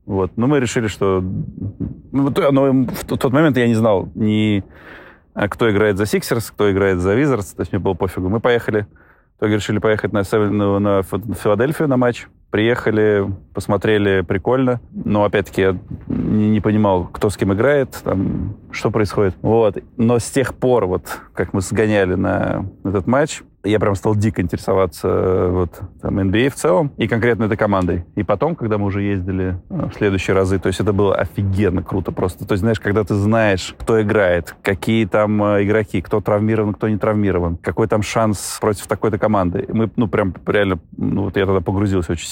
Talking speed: 180 wpm